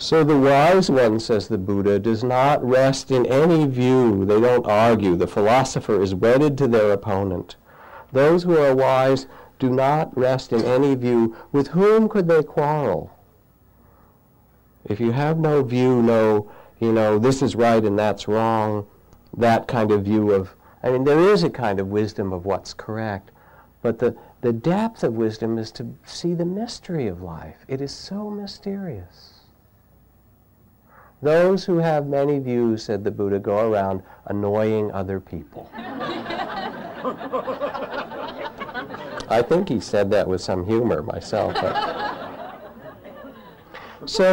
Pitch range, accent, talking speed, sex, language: 105-140 Hz, American, 145 wpm, male, English